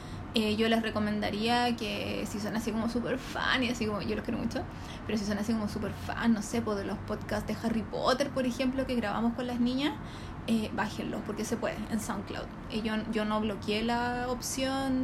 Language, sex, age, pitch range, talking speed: Spanish, female, 20-39, 200-245 Hz, 220 wpm